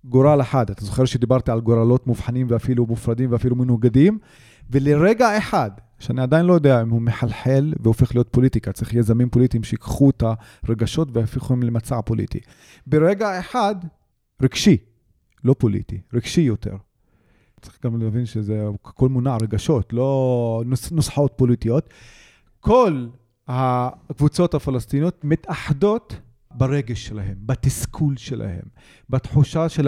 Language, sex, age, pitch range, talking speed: Hebrew, male, 30-49, 120-155 Hz, 125 wpm